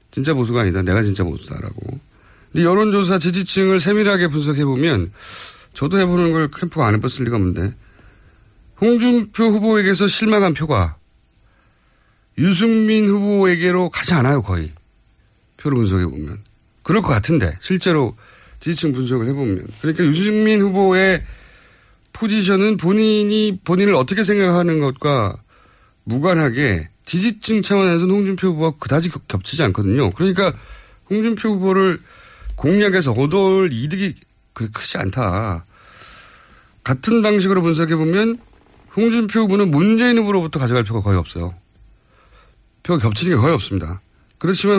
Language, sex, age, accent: Korean, male, 40-59, native